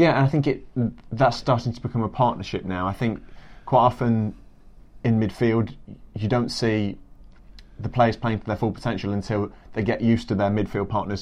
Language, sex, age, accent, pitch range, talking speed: English, male, 30-49, British, 100-120 Hz, 195 wpm